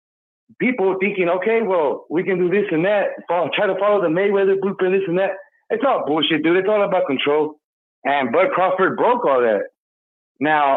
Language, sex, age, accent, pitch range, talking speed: English, male, 30-49, American, 180-255 Hz, 190 wpm